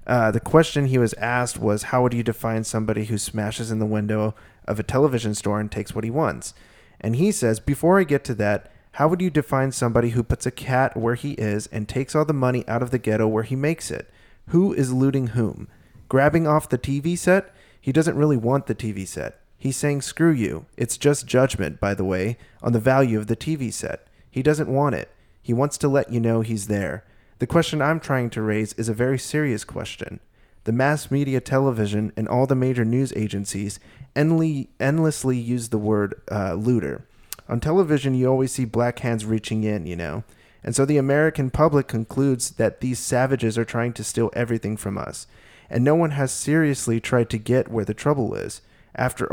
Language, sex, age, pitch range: English, male, 30-49, 110-135 Hz